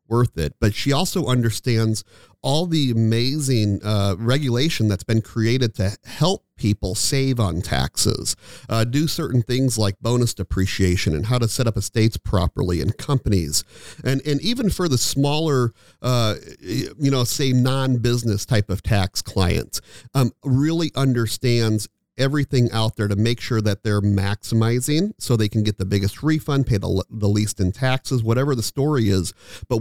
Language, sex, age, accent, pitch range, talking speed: English, male, 40-59, American, 105-130 Hz, 165 wpm